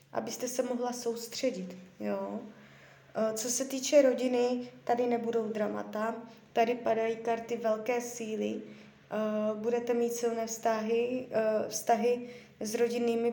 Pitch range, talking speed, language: 215-240 Hz, 110 wpm, Czech